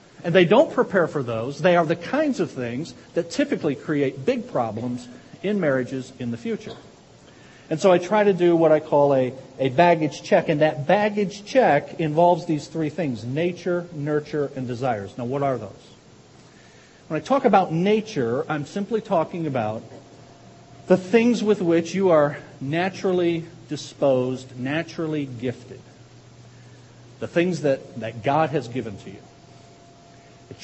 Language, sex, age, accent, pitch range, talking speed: English, male, 50-69, American, 135-180 Hz, 155 wpm